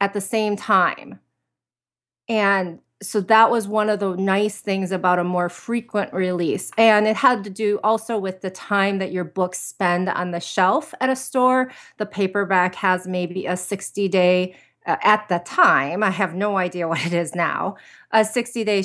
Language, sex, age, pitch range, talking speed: English, female, 30-49, 180-215 Hz, 180 wpm